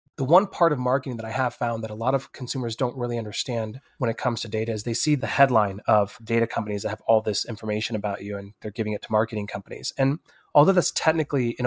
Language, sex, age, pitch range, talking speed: English, male, 20-39, 110-135 Hz, 250 wpm